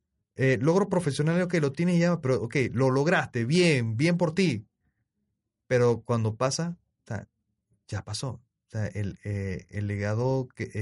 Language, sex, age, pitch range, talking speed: Spanish, male, 30-49, 105-130 Hz, 150 wpm